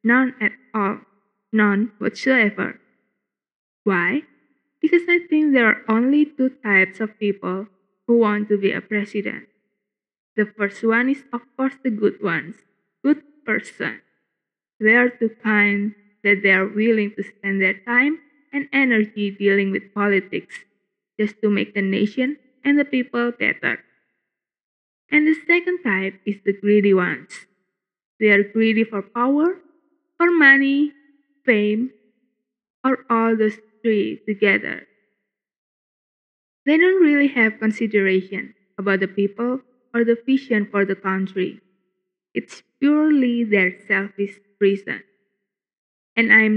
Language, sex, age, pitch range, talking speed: English, female, 20-39, 200-265 Hz, 130 wpm